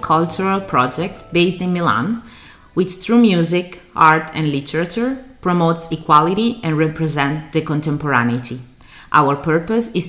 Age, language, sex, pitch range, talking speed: 30-49, Italian, female, 135-170 Hz, 120 wpm